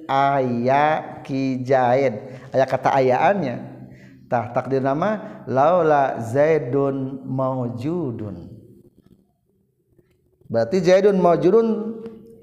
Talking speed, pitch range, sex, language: 70 wpm, 130-180 Hz, male, Indonesian